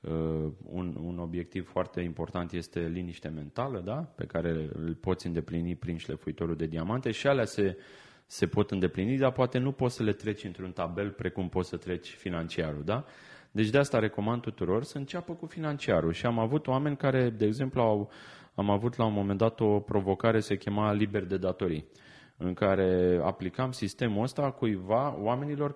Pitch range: 95-140 Hz